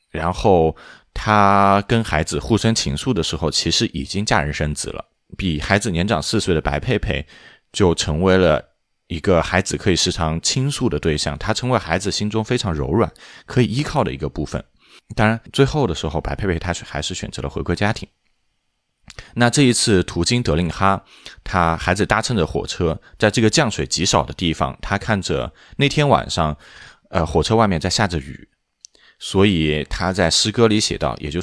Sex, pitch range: male, 80-115 Hz